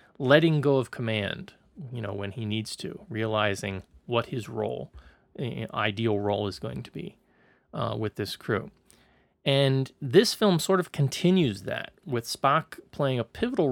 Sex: male